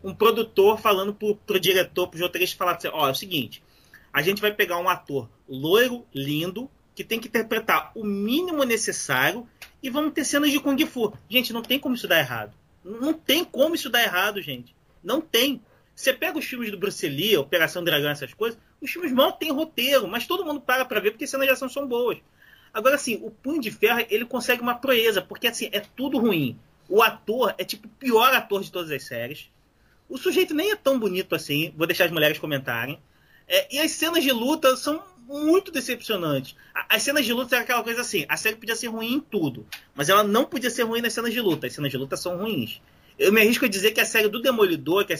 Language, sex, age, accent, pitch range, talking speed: Portuguese, male, 30-49, Brazilian, 185-265 Hz, 230 wpm